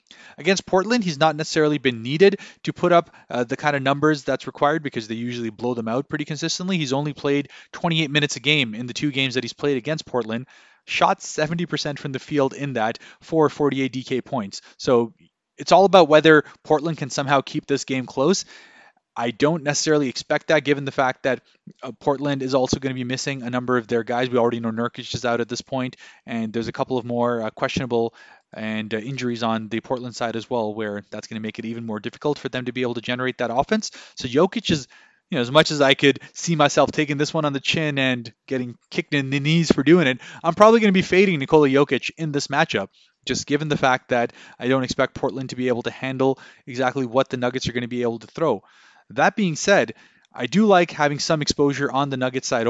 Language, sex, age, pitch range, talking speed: English, male, 20-39, 125-150 Hz, 235 wpm